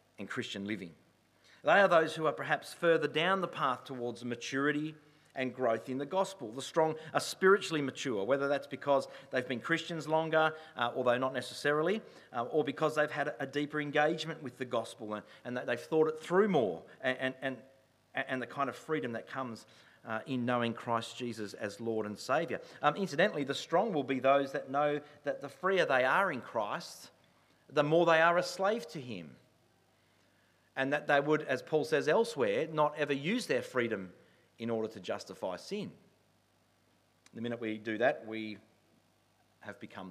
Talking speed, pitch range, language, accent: 185 wpm, 115-150 Hz, English, Australian